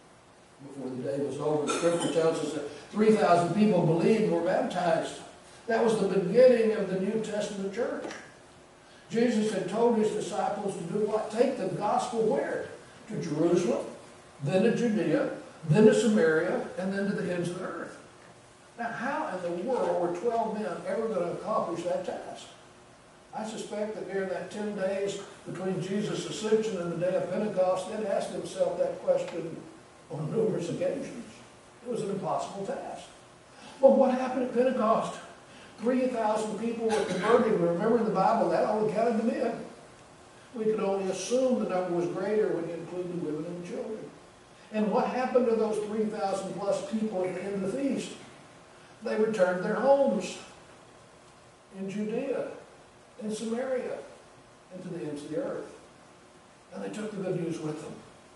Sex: male